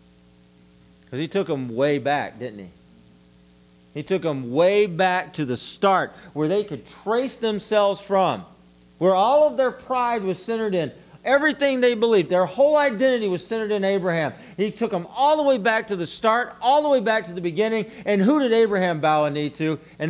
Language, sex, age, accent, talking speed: English, male, 40-59, American, 195 wpm